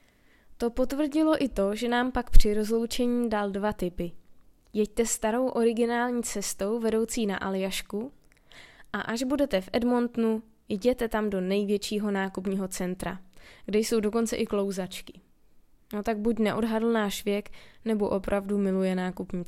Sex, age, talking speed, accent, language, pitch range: female, 20-39, 140 wpm, native, Czech, 200-230 Hz